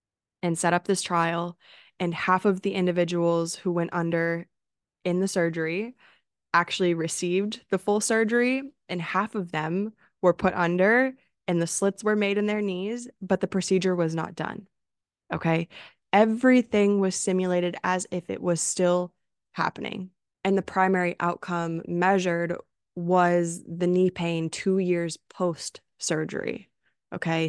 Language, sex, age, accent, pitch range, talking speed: English, female, 20-39, American, 170-190 Hz, 140 wpm